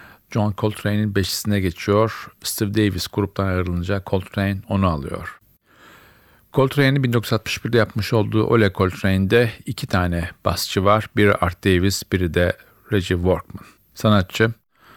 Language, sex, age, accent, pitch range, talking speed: Turkish, male, 50-69, native, 95-110 Hz, 115 wpm